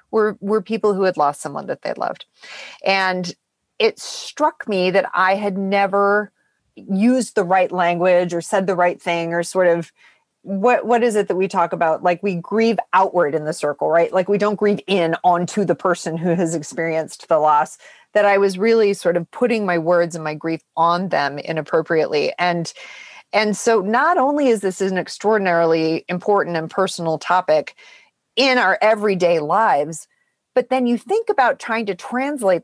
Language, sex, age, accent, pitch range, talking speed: English, female, 30-49, American, 175-220 Hz, 180 wpm